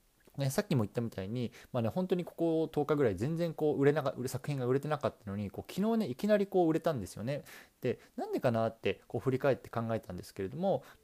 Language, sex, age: Japanese, male, 20-39